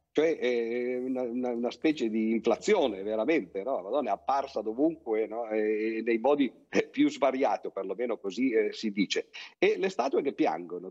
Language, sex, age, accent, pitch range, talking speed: Italian, male, 50-69, native, 110-150 Hz, 160 wpm